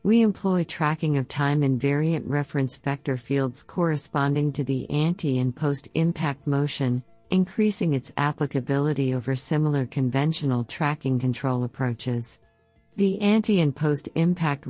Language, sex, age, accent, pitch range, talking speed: English, female, 50-69, American, 130-155 Hz, 115 wpm